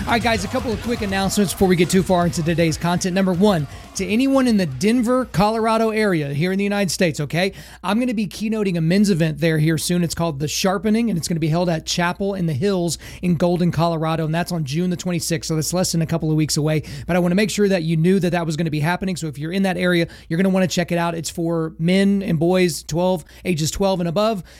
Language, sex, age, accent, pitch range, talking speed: English, male, 30-49, American, 170-205 Hz, 280 wpm